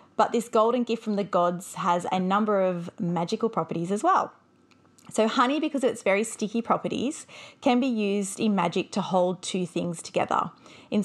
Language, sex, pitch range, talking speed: English, female, 180-230 Hz, 185 wpm